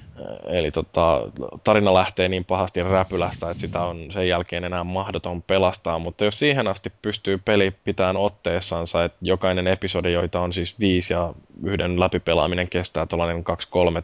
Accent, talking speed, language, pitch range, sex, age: native, 155 wpm, Finnish, 85-110 Hz, male, 20-39